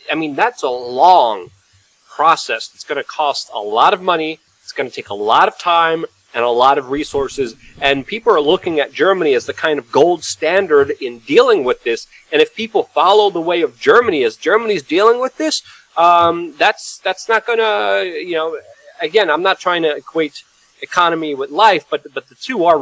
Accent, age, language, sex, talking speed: American, 30-49, English, male, 205 wpm